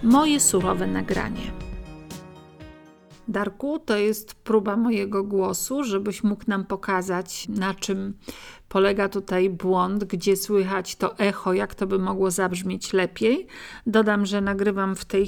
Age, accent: 50-69, native